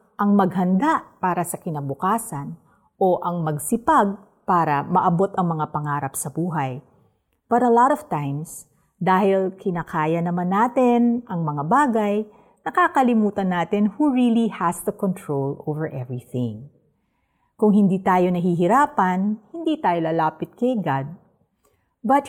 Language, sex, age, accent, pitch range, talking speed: Filipino, female, 50-69, native, 160-225 Hz, 125 wpm